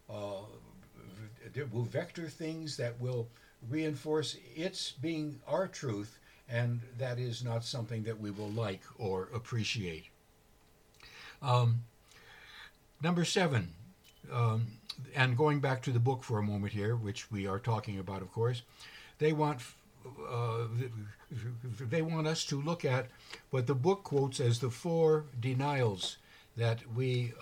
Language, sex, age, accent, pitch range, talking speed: English, male, 60-79, American, 110-140 Hz, 135 wpm